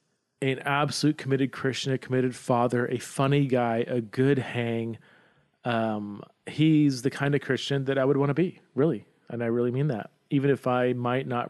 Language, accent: English, American